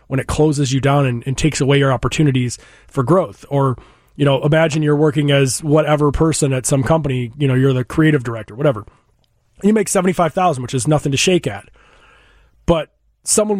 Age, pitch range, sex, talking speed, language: 30-49, 140-165 Hz, male, 190 wpm, English